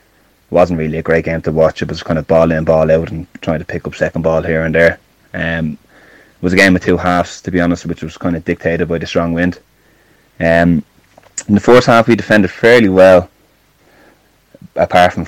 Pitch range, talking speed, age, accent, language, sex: 80-90 Hz, 220 wpm, 20-39, Irish, English, male